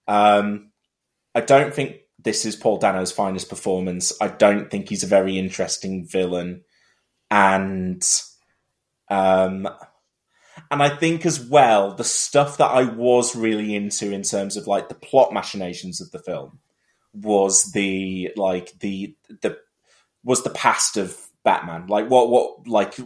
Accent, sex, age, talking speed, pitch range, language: British, male, 20-39, 145 wpm, 100-125 Hz, English